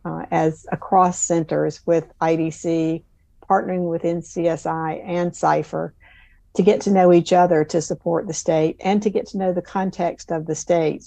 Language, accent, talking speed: English, American, 170 wpm